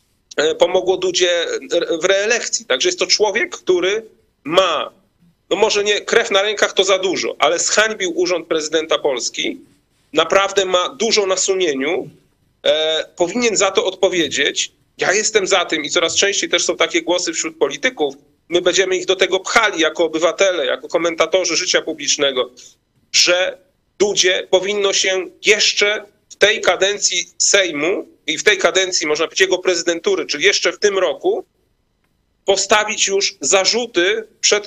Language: Polish